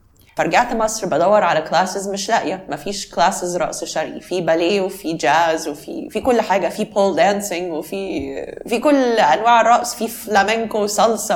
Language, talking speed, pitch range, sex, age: Arabic, 160 wpm, 150-200 Hz, female, 20-39